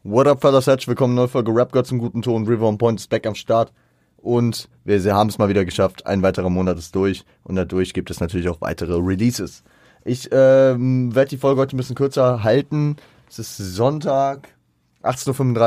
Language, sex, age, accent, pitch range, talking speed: German, male, 30-49, German, 95-125 Hz, 205 wpm